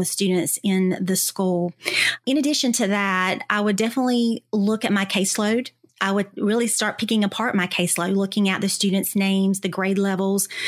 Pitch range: 190-220 Hz